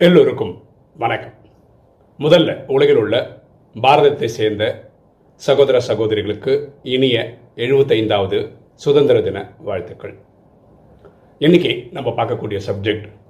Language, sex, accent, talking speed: Tamil, male, native, 80 wpm